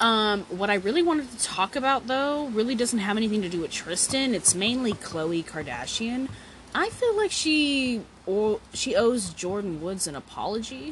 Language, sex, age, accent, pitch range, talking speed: English, female, 20-39, American, 170-235 Hz, 175 wpm